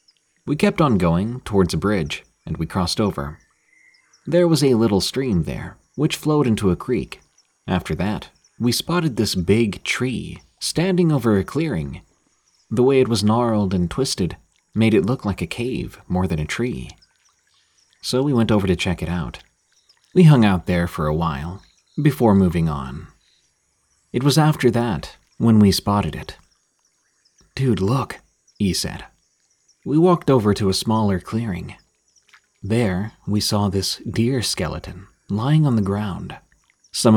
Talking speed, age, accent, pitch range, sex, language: 160 wpm, 30-49, American, 90-125 Hz, male, English